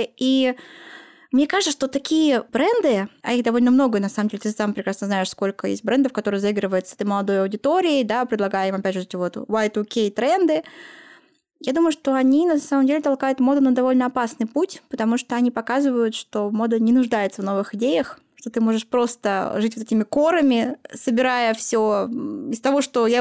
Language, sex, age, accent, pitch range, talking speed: Russian, female, 20-39, native, 225-275 Hz, 185 wpm